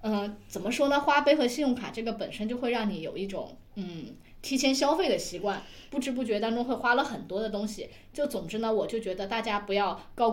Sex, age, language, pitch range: female, 20-39, Chinese, 195-255 Hz